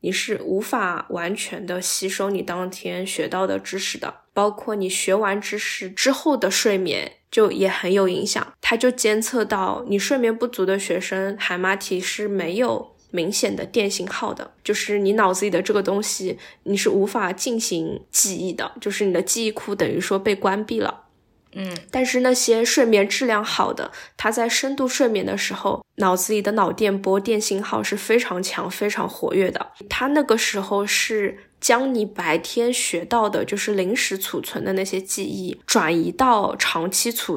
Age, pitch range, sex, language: 10-29, 190-225 Hz, female, Chinese